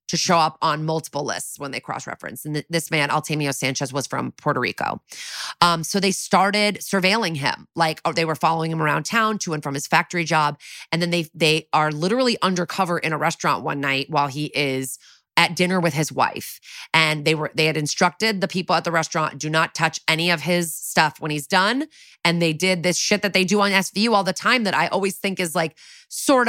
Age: 20-39